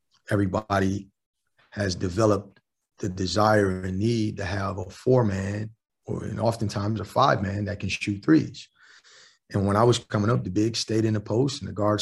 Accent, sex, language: American, male, English